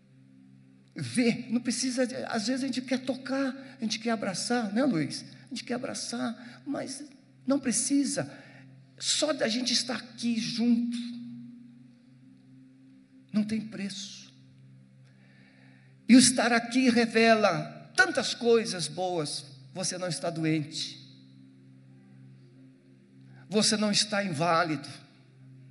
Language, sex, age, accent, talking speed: Portuguese, male, 50-69, Brazilian, 110 wpm